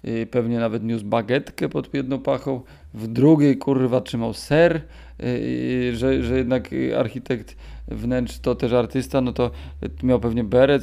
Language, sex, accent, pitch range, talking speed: Polish, male, native, 120-140 Hz, 145 wpm